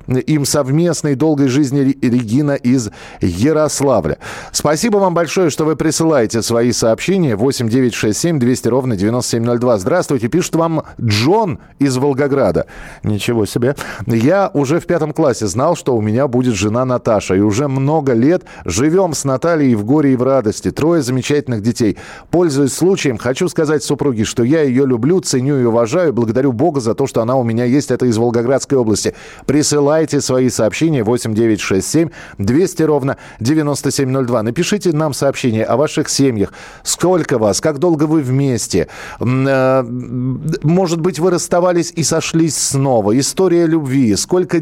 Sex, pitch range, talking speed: male, 125-160 Hz, 145 wpm